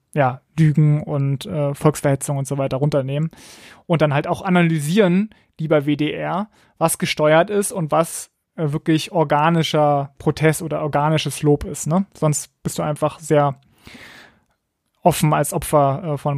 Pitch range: 145-165 Hz